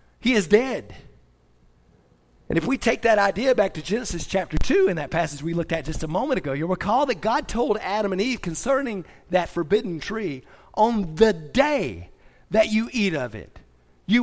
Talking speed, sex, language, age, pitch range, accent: 190 wpm, male, English, 40-59, 155-215 Hz, American